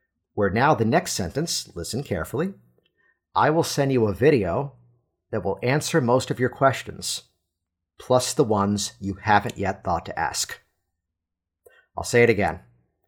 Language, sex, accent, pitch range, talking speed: English, male, American, 100-135 Hz, 150 wpm